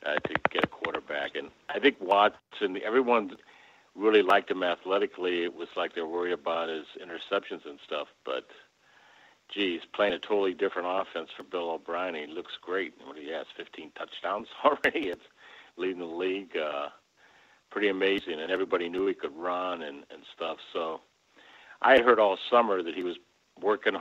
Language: English